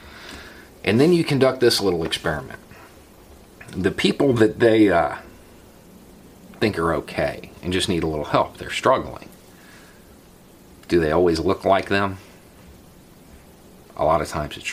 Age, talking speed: 40-59, 140 wpm